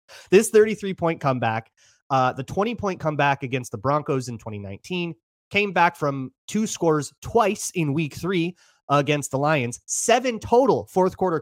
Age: 30-49